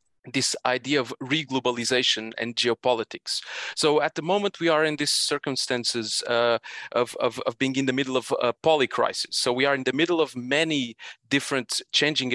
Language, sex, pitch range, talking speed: English, male, 120-145 Hz, 180 wpm